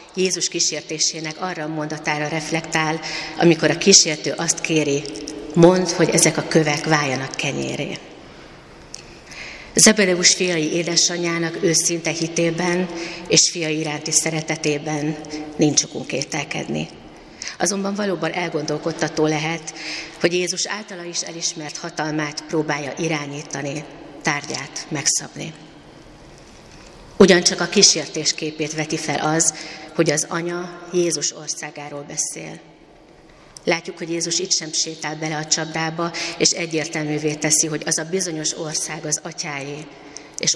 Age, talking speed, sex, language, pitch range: 30-49, 110 wpm, female, Hungarian, 155-175 Hz